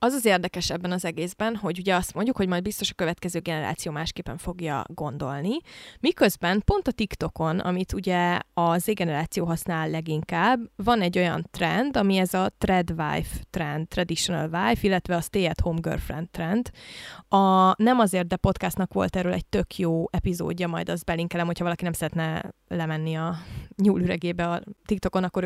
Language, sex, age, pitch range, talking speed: Hungarian, female, 20-39, 175-210 Hz, 165 wpm